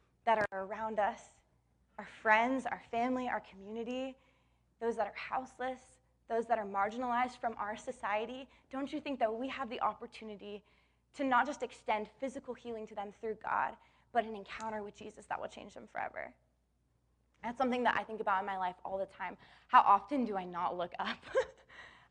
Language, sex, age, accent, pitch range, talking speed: English, female, 20-39, American, 205-255 Hz, 185 wpm